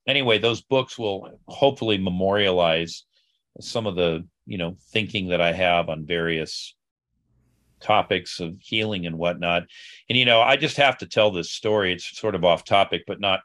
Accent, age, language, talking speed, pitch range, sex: American, 40-59, English, 175 wpm, 85-105 Hz, male